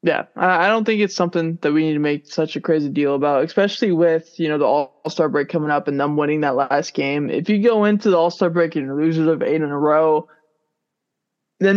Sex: male